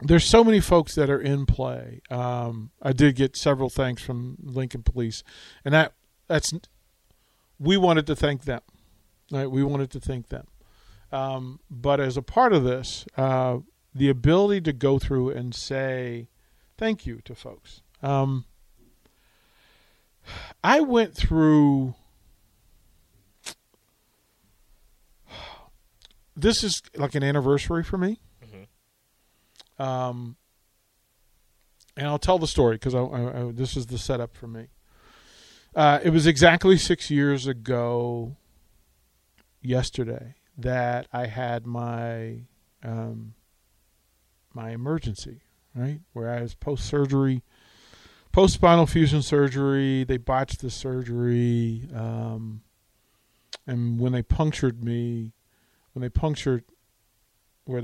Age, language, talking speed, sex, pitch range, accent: 50-69, English, 120 wpm, male, 115-140 Hz, American